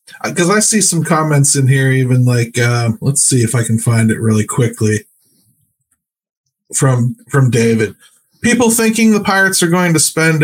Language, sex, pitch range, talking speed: English, male, 130-185 Hz, 170 wpm